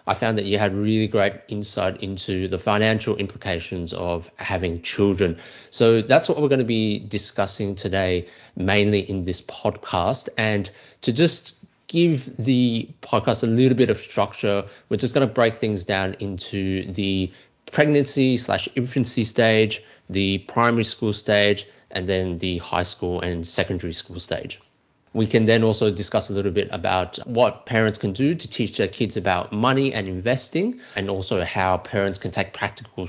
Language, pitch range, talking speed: English, 95-115 Hz, 170 wpm